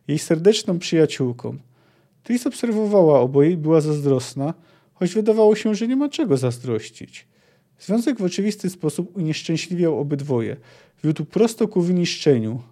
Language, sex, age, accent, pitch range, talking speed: Polish, male, 40-59, native, 135-180 Hz, 125 wpm